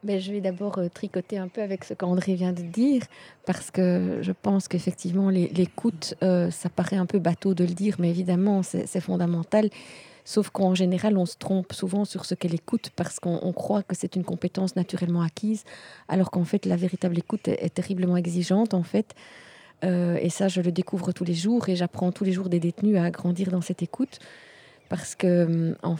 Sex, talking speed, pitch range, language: female, 205 wpm, 175-200 Hz, French